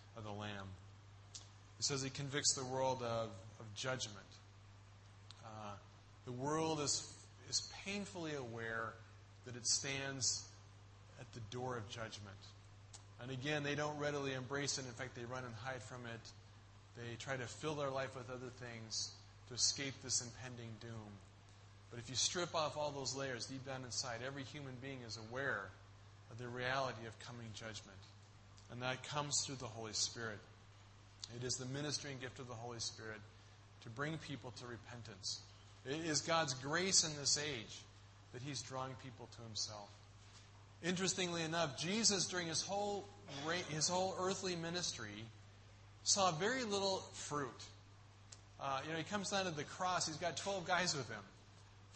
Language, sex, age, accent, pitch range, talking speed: English, male, 30-49, American, 105-145 Hz, 165 wpm